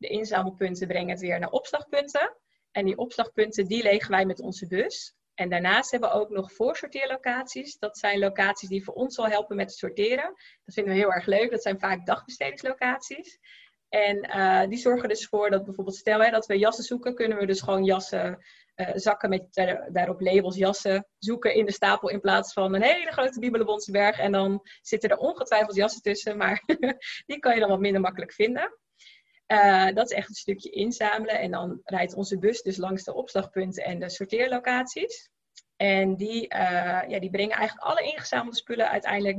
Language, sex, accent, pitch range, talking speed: Dutch, female, Dutch, 195-235 Hz, 195 wpm